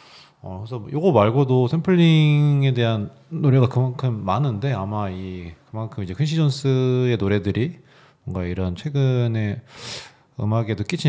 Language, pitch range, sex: Korean, 100-135 Hz, male